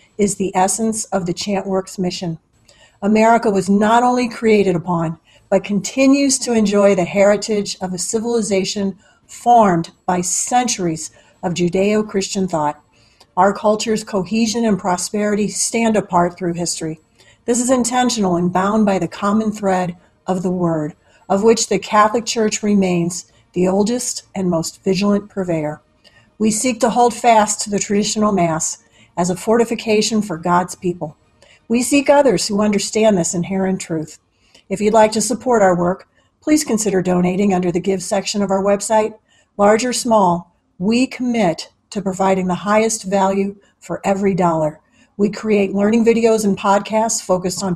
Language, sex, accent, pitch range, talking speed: English, female, American, 175-215 Hz, 155 wpm